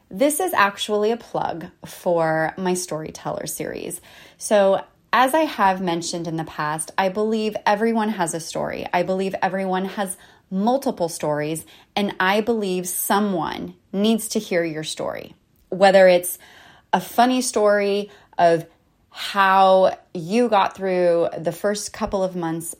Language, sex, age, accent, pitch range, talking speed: English, female, 20-39, American, 165-200 Hz, 140 wpm